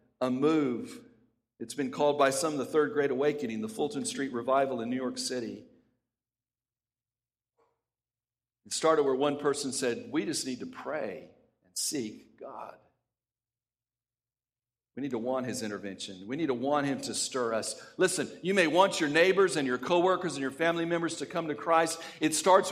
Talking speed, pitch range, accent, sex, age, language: 175 wpm, 125-185 Hz, American, male, 50-69, English